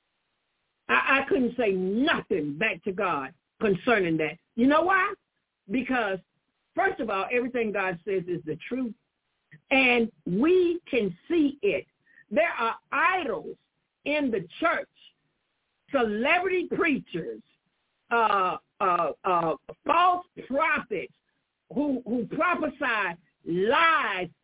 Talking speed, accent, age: 110 wpm, American, 60-79